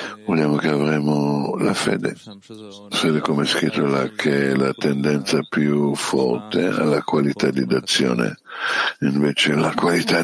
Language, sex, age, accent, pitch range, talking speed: Italian, male, 60-79, native, 70-85 Hz, 135 wpm